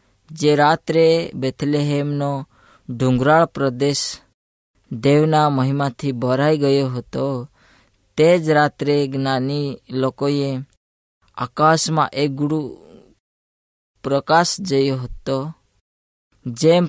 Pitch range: 125-155 Hz